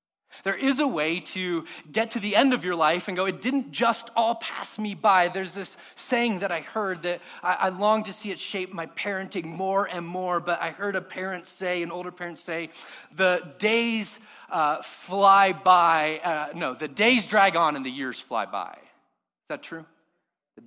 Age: 30-49